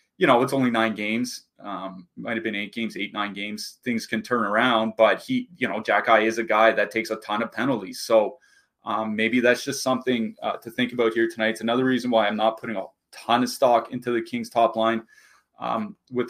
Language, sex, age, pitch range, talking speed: English, male, 20-39, 110-130 Hz, 230 wpm